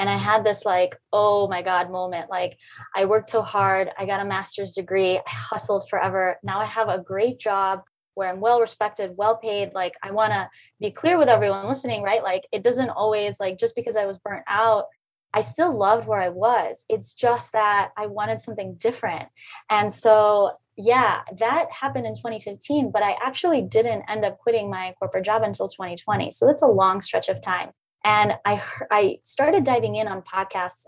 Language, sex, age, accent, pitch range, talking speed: English, female, 20-39, American, 190-225 Hz, 195 wpm